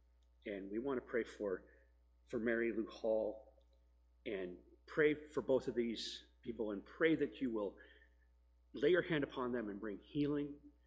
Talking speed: 165 wpm